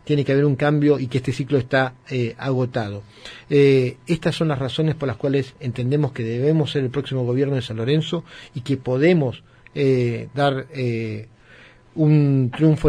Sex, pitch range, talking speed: male, 125-150 Hz, 175 wpm